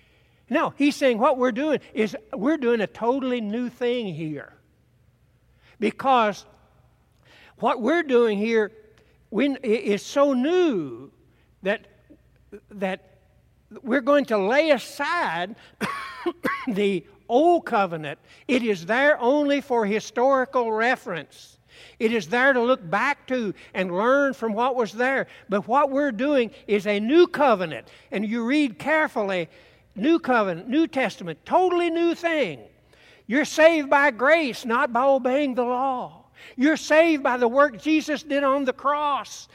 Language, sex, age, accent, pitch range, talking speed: English, male, 60-79, American, 220-285 Hz, 135 wpm